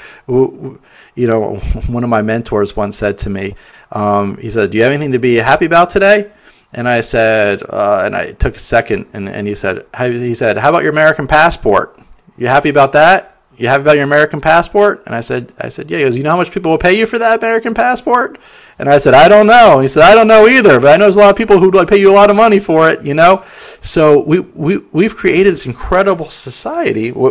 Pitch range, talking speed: 115-185 Hz, 245 wpm